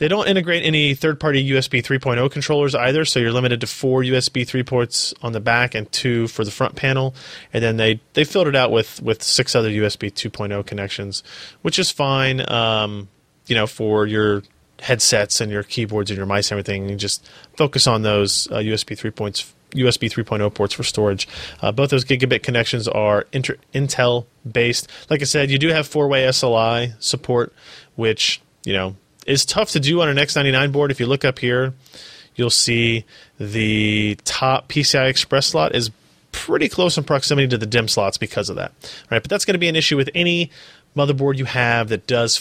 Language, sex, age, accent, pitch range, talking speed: English, male, 20-39, American, 105-140 Hz, 195 wpm